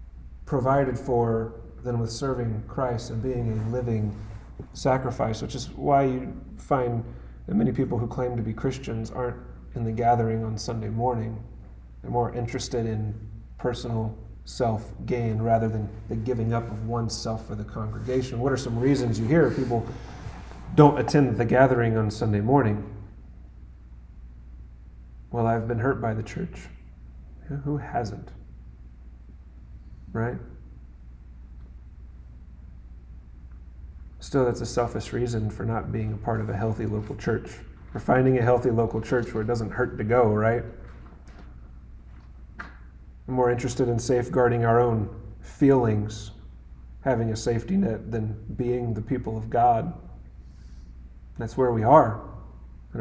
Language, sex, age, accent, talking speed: English, male, 30-49, American, 140 wpm